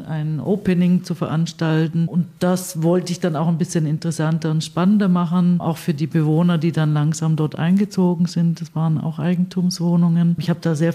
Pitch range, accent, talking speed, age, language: 155-170 Hz, German, 185 wpm, 50-69, German